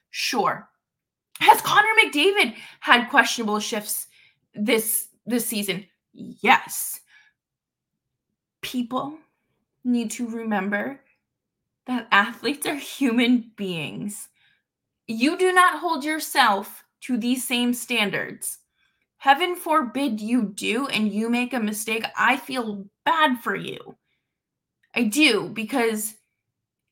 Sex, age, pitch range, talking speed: female, 20-39, 225-300 Hz, 105 wpm